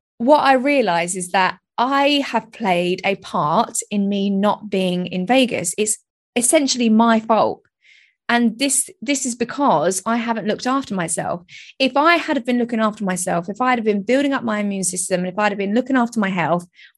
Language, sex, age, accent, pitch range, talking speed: English, female, 20-39, British, 195-255 Hz, 190 wpm